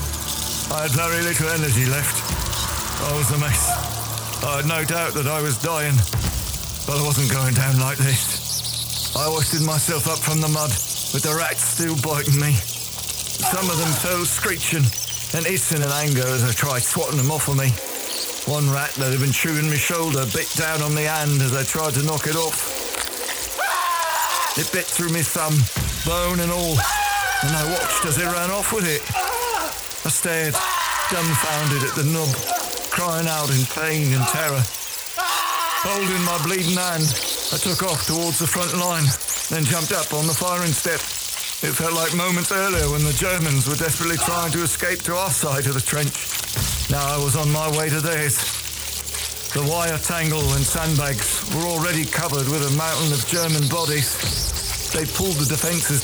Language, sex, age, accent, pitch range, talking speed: English, male, 50-69, British, 135-165 Hz, 180 wpm